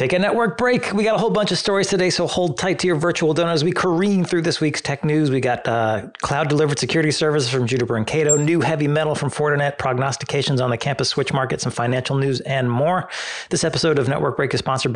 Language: English